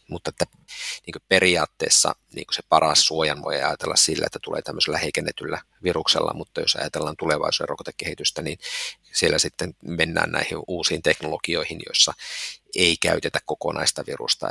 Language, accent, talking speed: Finnish, native, 145 wpm